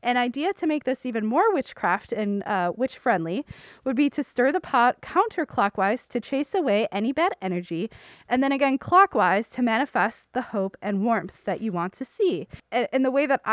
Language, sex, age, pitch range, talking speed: English, female, 20-39, 205-255 Hz, 200 wpm